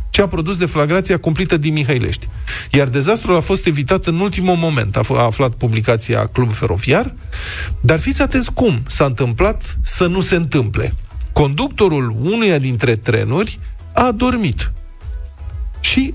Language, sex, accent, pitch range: Romanian, male, native, 115-165 Hz